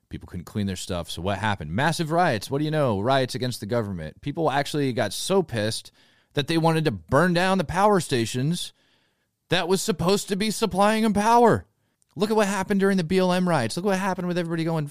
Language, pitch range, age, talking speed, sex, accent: English, 105-155 Hz, 30-49, 220 wpm, male, American